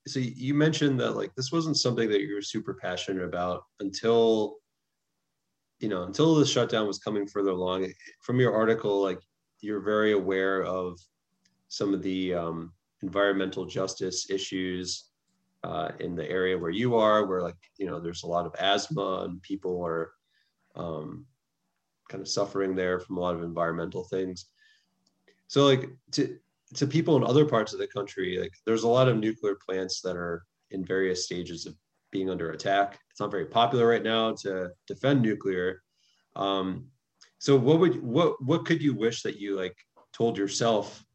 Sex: male